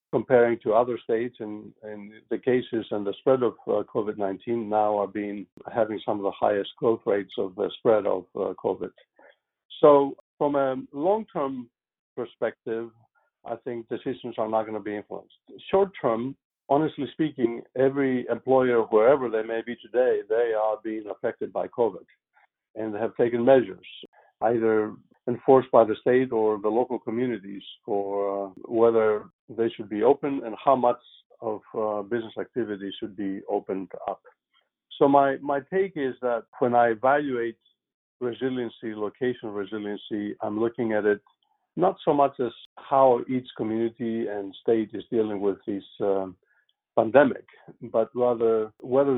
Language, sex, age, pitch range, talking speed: English, male, 60-79, 105-130 Hz, 155 wpm